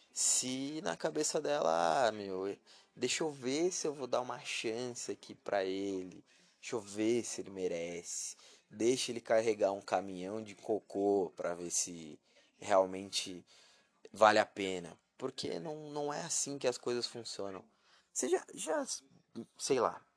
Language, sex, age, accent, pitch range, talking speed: Portuguese, male, 20-39, Brazilian, 100-140 Hz, 155 wpm